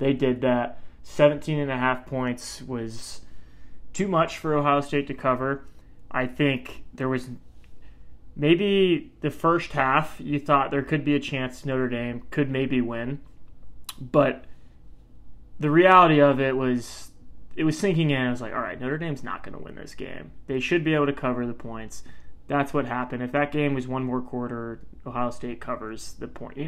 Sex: male